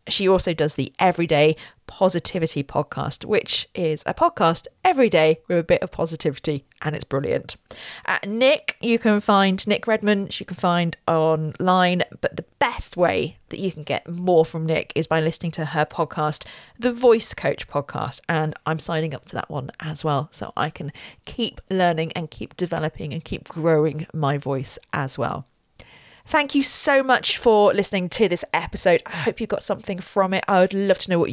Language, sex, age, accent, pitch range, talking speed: English, female, 40-59, British, 155-210 Hz, 190 wpm